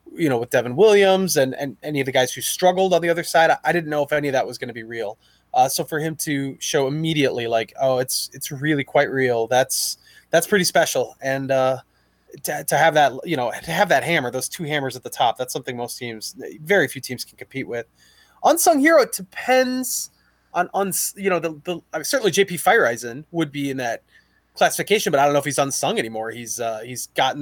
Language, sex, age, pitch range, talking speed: English, male, 20-39, 130-170 Hz, 230 wpm